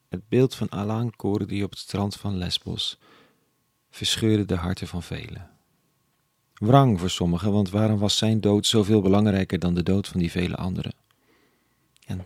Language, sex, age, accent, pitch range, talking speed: Dutch, male, 40-59, Dutch, 90-110 Hz, 160 wpm